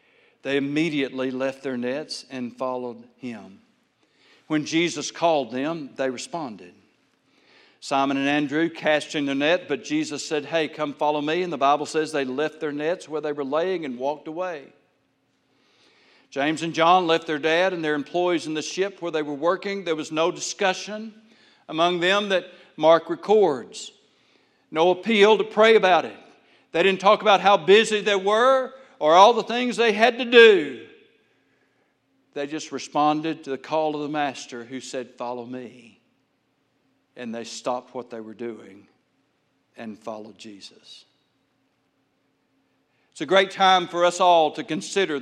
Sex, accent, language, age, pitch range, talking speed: male, American, English, 60-79, 135-185 Hz, 160 wpm